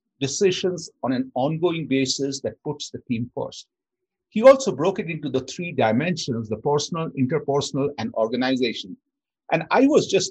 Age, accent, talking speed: 50-69, Indian, 155 wpm